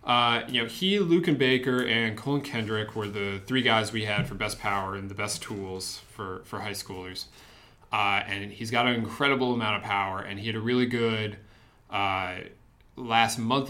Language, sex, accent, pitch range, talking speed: English, male, American, 105-130 Hz, 195 wpm